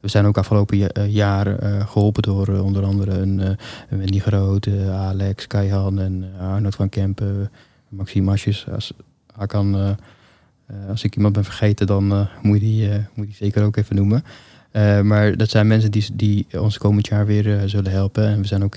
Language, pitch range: Dutch, 100-105 Hz